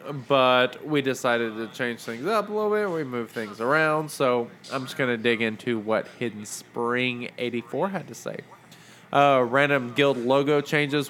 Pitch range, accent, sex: 120-150 Hz, American, male